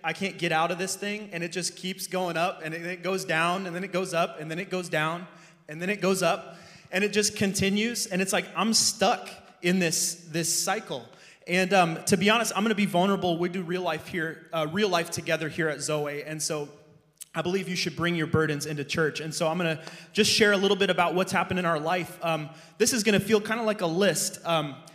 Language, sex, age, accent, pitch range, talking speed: English, male, 20-39, American, 160-190 Hz, 255 wpm